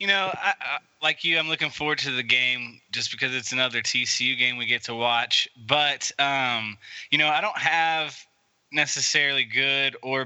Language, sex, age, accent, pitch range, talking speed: English, male, 20-39, American, 115-145 Hz, 175 wpm